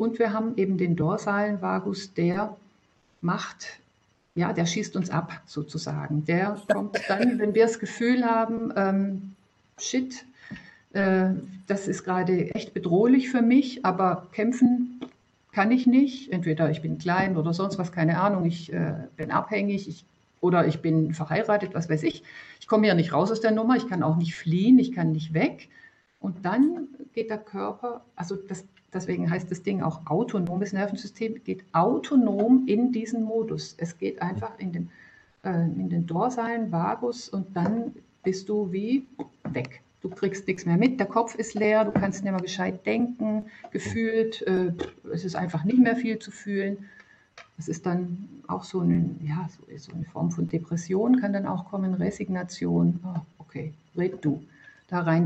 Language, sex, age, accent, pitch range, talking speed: German, female, 60-79, German, 170-225 Hz, 175 wpm